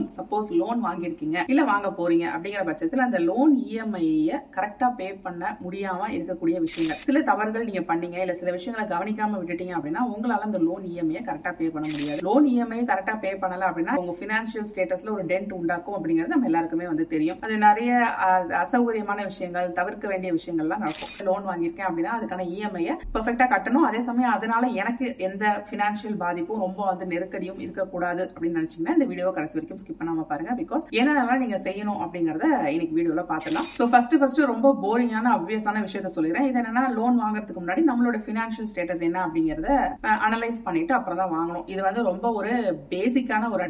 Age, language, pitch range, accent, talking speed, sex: 30-49, Tamil, 180-250 Hz, native, 30 wpm, female